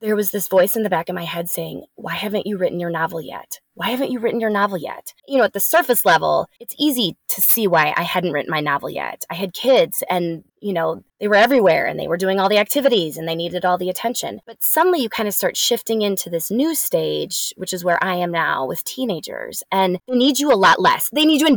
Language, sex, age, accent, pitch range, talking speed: English, female, 20-39, American, 170-235 Hz, 260 wpm